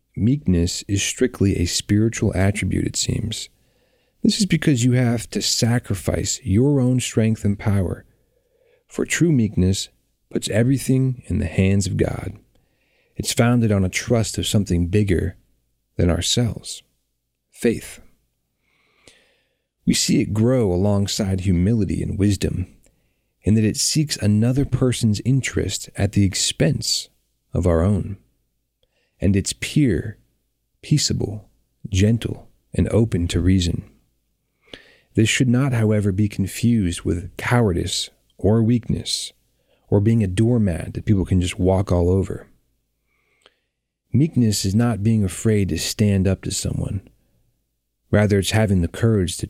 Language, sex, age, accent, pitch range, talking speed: English, male, 40-59, American, 95-120 Hz, 130 wpm